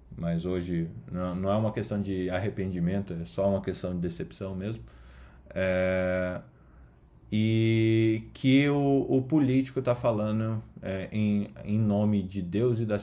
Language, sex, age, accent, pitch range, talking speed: Portuguese, male, 20-39, Brazilian, 90-110 Hz, 140 wpm